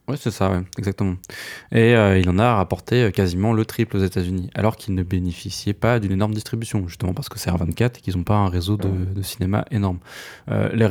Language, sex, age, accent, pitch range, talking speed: French, male, 20-39, French, 95-115 Hz, 220 wpm